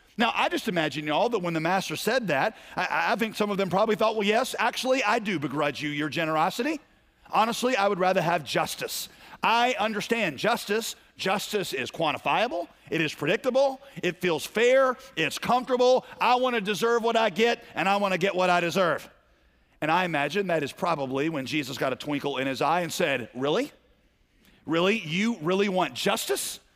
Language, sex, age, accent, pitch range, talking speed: English, male, 40-59, American, 160-225 Hz, 185 wpm